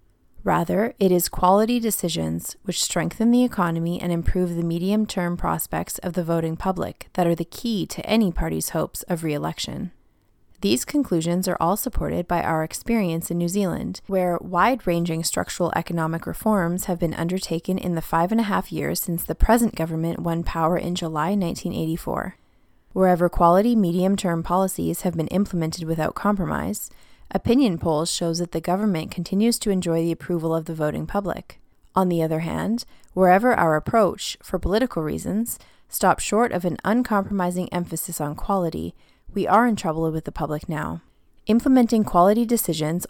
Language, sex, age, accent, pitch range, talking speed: English, female, 20-39, American, 165-200 Hz, 160 wpm